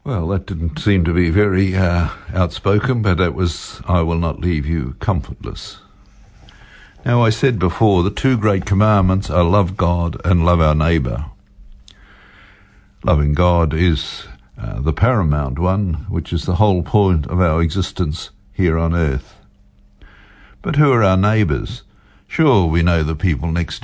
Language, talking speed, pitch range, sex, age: English, 155 wpm, 80-100 Hz, male, 60-79